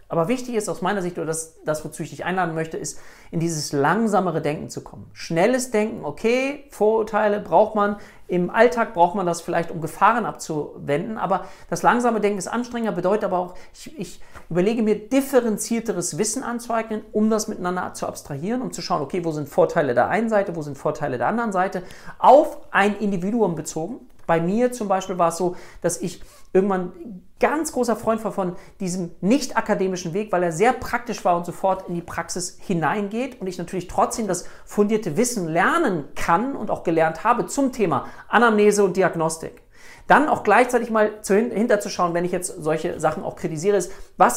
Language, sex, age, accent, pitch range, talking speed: German, male, 40-59, German, 170-220 Hz, 190 wpm